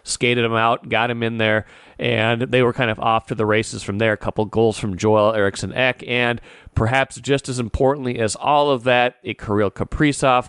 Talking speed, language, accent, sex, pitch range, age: 210 wpm, English, American, male, 105-125 Hz, 30-49